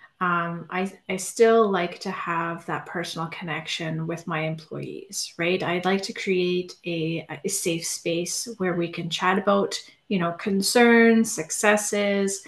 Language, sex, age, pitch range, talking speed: English, female, 30-49, 170-200 Hz, 150 wpm